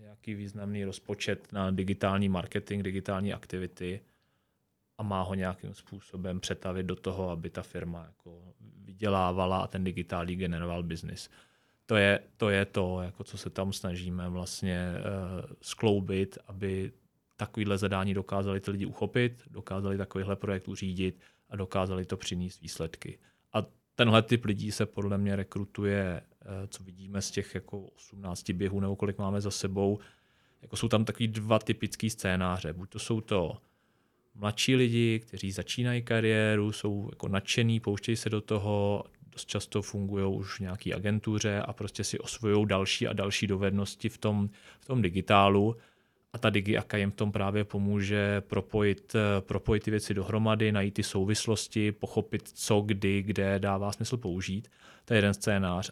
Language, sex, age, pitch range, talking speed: Czech, male, 30-49, 95-110 Hz, 150 wpm